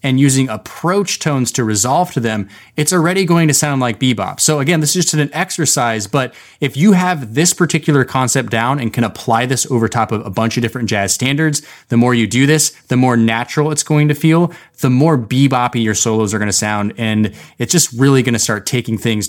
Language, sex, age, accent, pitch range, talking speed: English, male, 20-39, American, 115-150 Hz, 225 wpm